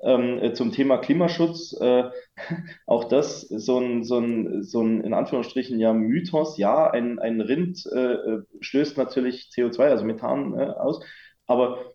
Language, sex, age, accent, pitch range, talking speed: German, male, 20-39, German, 115-145 Hz, 150 wpm